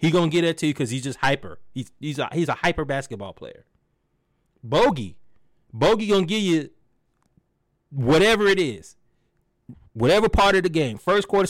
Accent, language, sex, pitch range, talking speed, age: American, English, male, 120-165 Hz, 165 wpm, 30-49